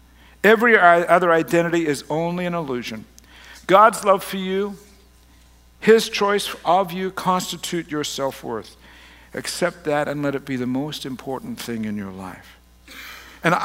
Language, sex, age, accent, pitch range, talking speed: English, male, 60-79, American, 135-210 Hz, 140 wpm